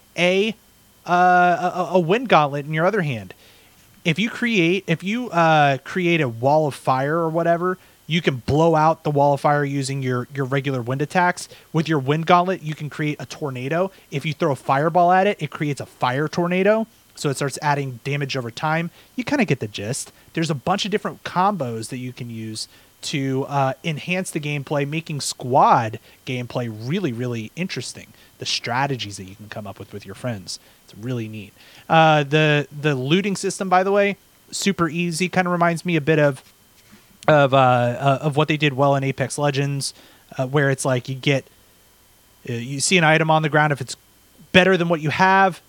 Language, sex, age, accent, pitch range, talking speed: English, male, 30-49, American, 130-175 Hz, 200 wpm